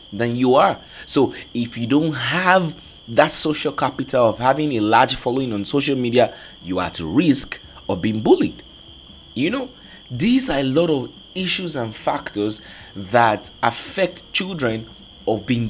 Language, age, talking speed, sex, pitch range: English, 30-49, 155 wpm, male, 115-170 Hz